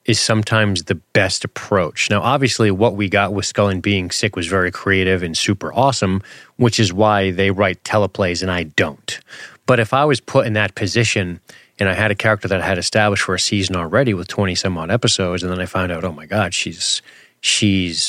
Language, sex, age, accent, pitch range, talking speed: English, male, 30-49, American, 95-115 Hz, 210 wpm